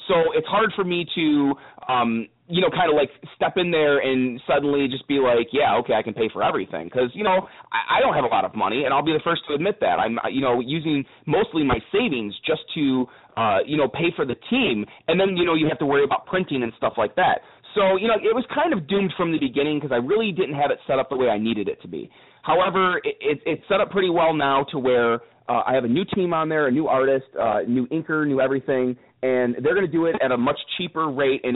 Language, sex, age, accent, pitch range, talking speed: English, male, 30-49, American, 125-170 Hz, 265 wpm